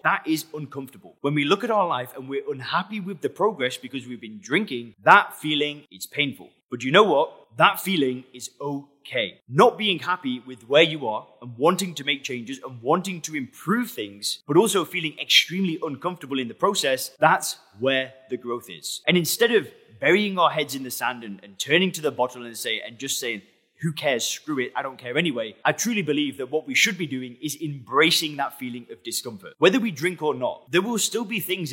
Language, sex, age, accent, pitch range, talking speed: English, male, 20-39, British, 130-180 Hz, 215 wpm